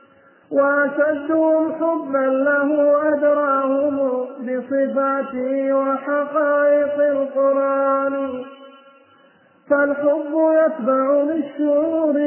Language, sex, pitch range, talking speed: Arabic, male, 270-295 Hz, 50 wpm